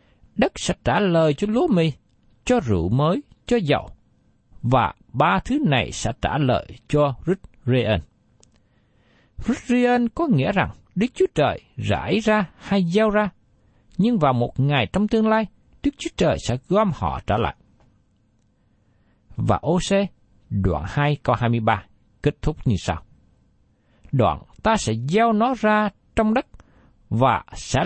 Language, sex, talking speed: Vietnamese, male, 145 wpm